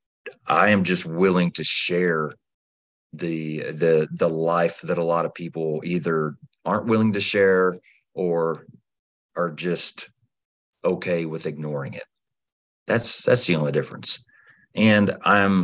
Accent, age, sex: American, 30-49, male